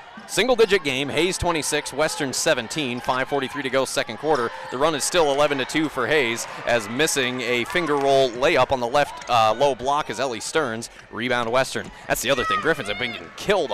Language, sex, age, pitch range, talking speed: English, male, 30-49, 145-230 Hz, 190 wpm